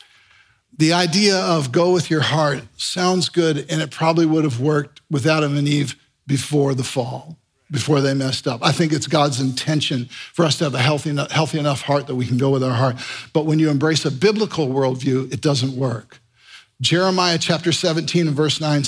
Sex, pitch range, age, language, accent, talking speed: male, 135-175 Hz, 50-69, English, American, 195 wpm